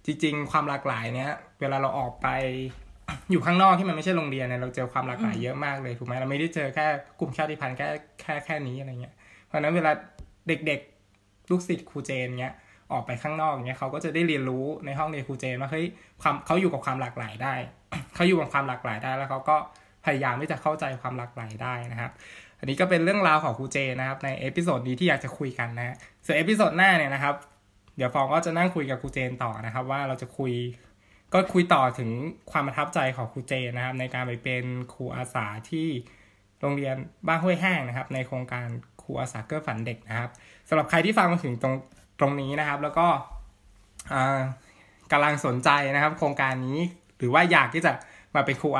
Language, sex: Thai, male